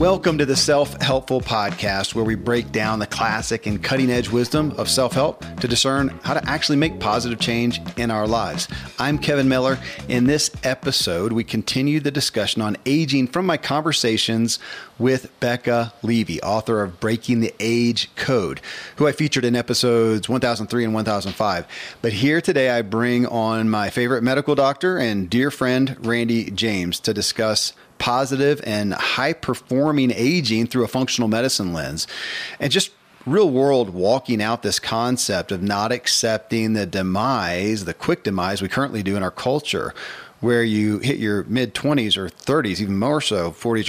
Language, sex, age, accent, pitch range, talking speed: English, male, 40-59, American, 110-135 Hz, 165 wpm